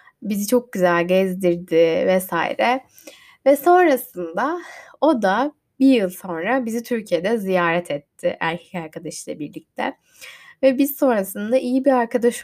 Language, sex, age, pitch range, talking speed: Turkish, female, 10-29, 175-260 Hz, 120 wpm